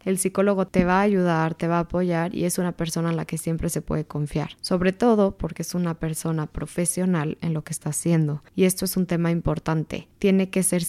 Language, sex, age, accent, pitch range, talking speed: Spanish, female, 20-39, Mexican, 170-200 Hz, 230 wpm